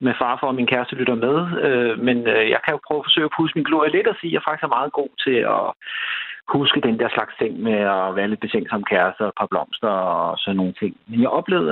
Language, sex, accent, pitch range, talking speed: Danish, male, native, 120-160 Hz, 260 wpm